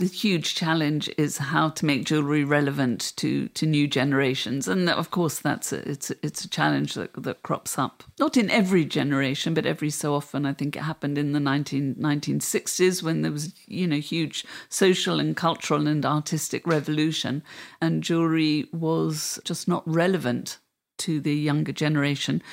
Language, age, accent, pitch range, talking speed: English, 50-69, British, 145-170 Hz, 170 wpm